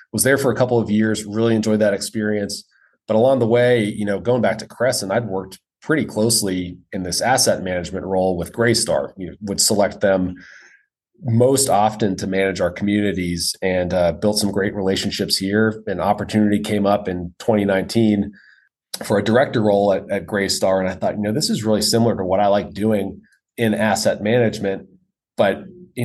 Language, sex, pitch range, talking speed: English, male, 95-110 Hz, 190 wpm